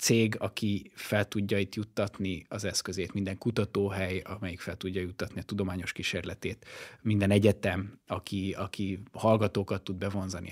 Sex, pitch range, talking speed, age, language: male, 100-115 Hz, 135 wpm, 20-39, Hungarian